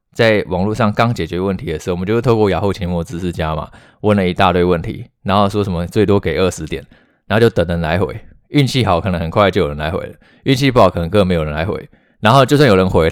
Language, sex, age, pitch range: Chinese, male, 20-39, 90-110 Hz